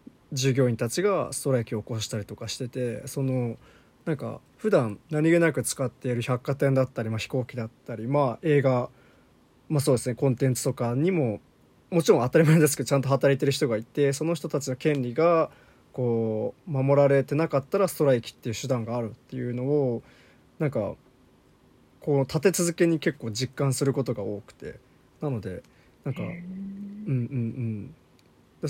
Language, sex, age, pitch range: Japanese, male, 20-39, 125-150 Hz